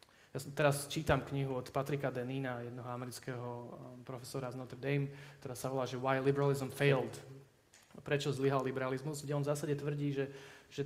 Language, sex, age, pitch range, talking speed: Slovak, male, 20-39, 130-145 Hz, 165 wpm